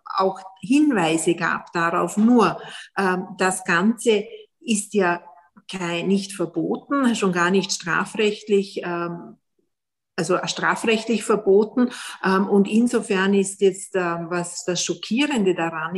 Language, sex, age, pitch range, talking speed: German, female, 50-69, 180-210 Hz, 110 wpm